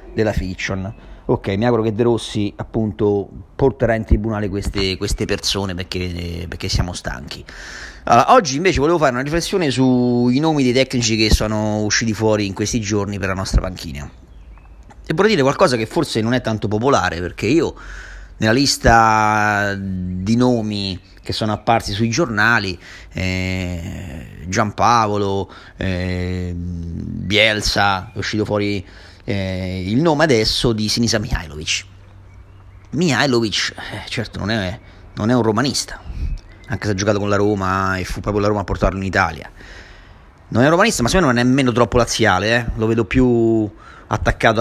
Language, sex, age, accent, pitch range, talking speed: Italian, male, 30-49, native, 95-115 Hz, 160 wpm